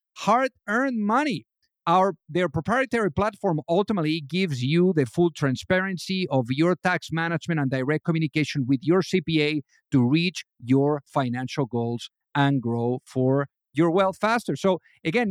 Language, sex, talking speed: English, male, 140 wpm